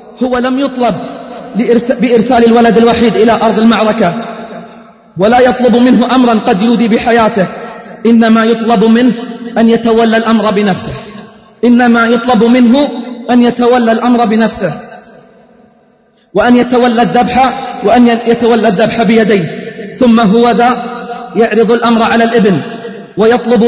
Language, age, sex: Arabic, 30-49, male